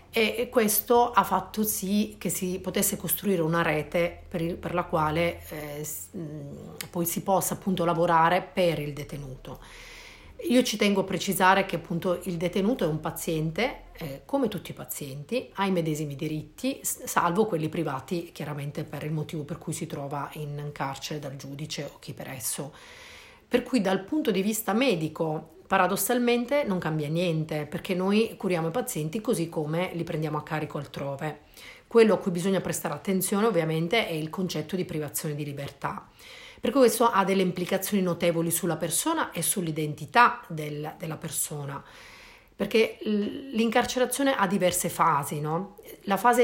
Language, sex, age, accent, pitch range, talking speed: Italian, female, 40-59, native, 155-205 Hz, 160 wpm